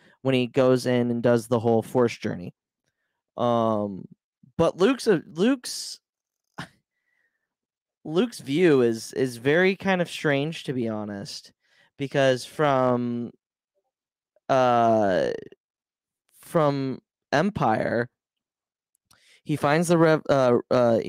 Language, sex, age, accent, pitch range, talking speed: English, male, 20-39, American, 120-150 Hz, 95 wpm